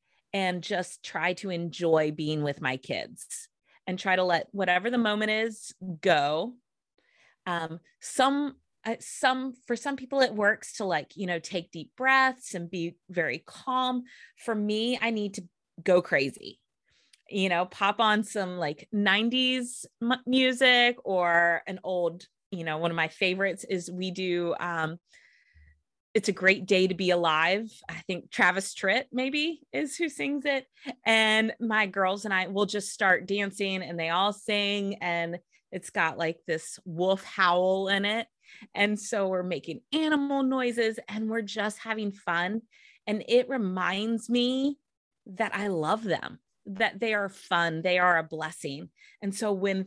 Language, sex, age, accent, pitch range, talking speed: English, female, 20-39, American, 180-230 Hz, 160 wpm